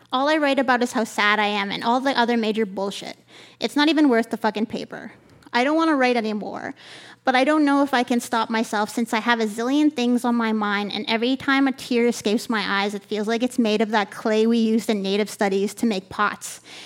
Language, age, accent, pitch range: English, 30-49, American, 220-275 Hz